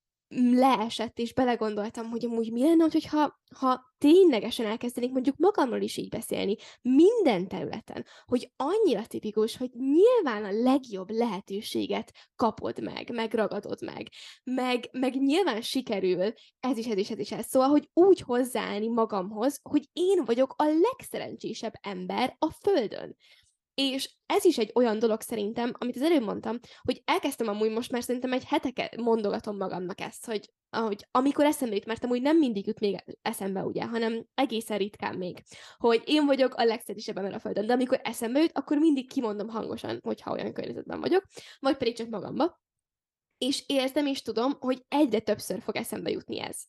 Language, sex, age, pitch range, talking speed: Hungarian, female, 10-29, 220-280 Hz, 165 wpm